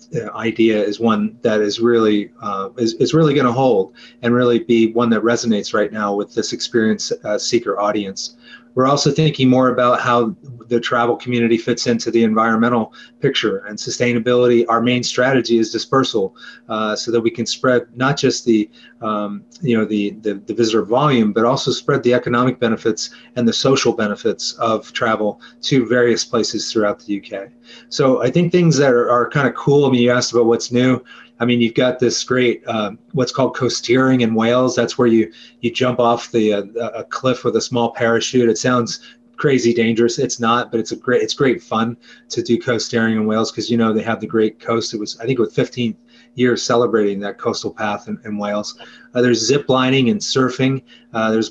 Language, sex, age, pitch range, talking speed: English, male, 30-49, 115-125 Hz, 205 wpm